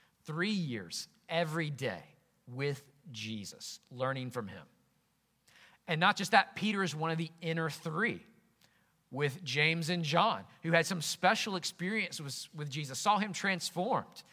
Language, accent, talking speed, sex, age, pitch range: English, American, 145 wpm, male, 40-59, 135-170 Hz